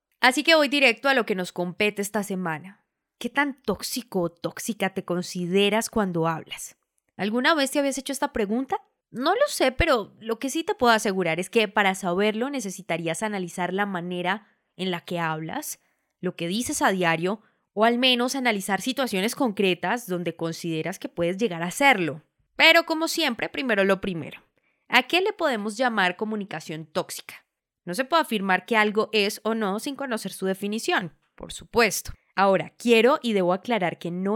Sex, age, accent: female, 20-39, Colombian